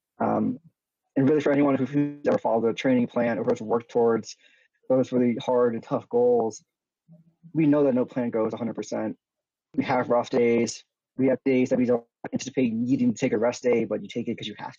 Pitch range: 120-150 Hz